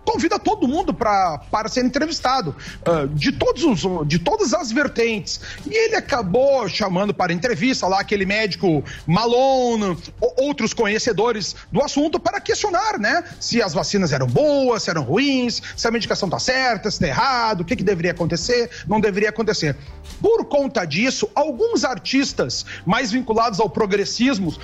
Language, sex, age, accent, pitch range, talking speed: Portuguese, male, 40-59, Brazilian, 210-290 Hz, 160 wpm